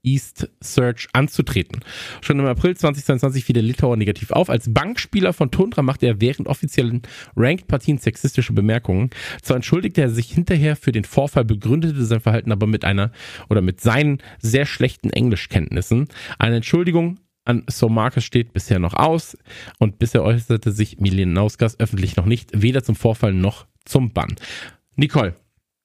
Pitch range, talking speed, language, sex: 115-150 Hz, 155 wpm, German, male